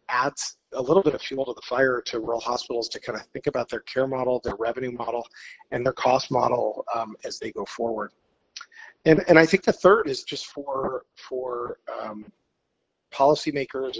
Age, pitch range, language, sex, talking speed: 30-49, 125-190 Hz, English, male, 190 wpm